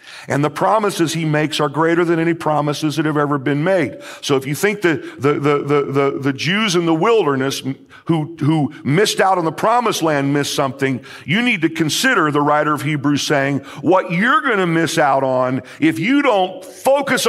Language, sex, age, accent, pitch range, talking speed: English, male, 50-69, American, 135-175 Hz, 205 wpm